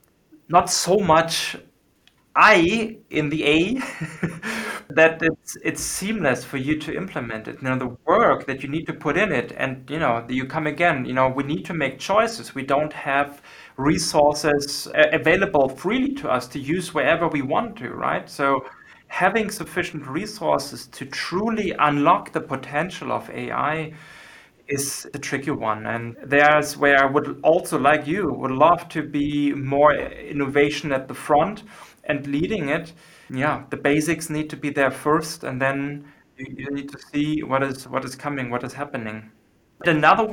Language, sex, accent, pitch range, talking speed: English, male, German, 140-170 Hz, 170 wpm